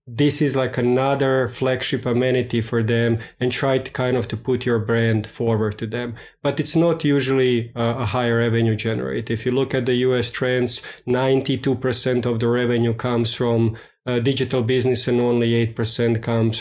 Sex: male